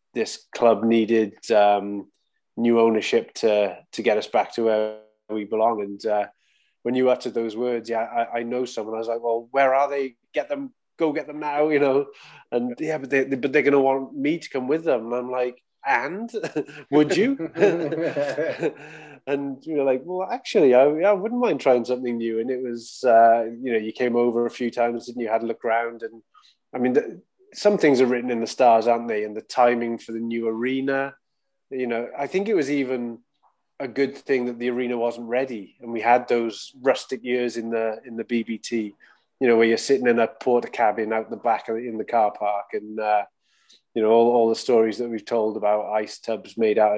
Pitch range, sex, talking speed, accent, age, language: 115-135 Hz, male, 225 wpm, British, 20-39, English